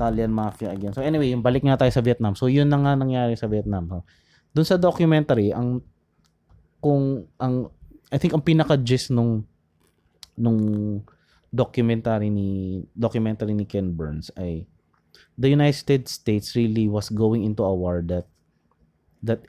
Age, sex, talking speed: 20-39, male, 145 wpm